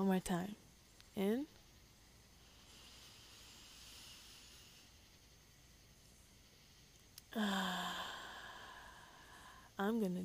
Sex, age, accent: female, 20-39, American